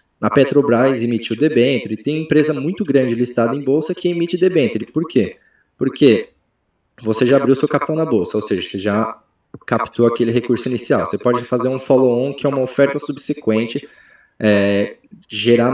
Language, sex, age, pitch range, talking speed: Portuguese, male, 20-39, 120-150 Hz, 165 wpm